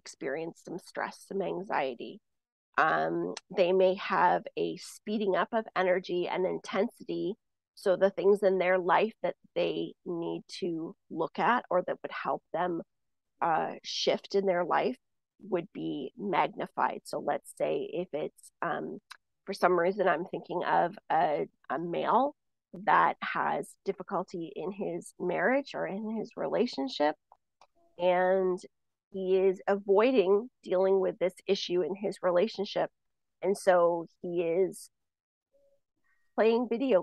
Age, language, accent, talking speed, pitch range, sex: 30-49, English, American, 135 wpm, 180-210 Hz, female